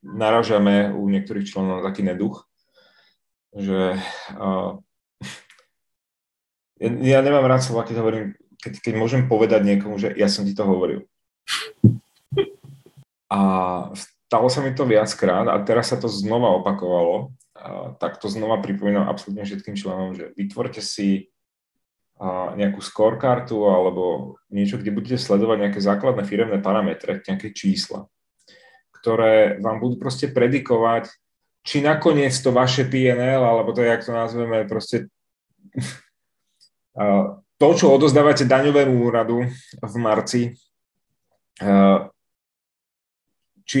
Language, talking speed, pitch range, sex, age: Czech, 115 wpm, 100-125 Hz, male, 30-49